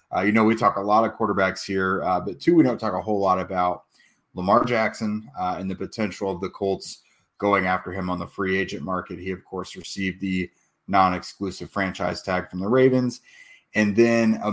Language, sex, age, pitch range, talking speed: English, male, 30-49, 95-105 Hz, 210 wpm